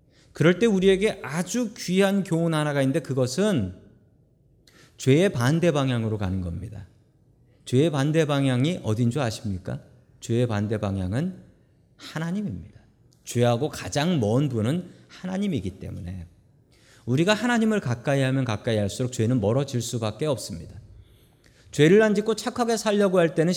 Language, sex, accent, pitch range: Korean, male, native, 115-170 Hz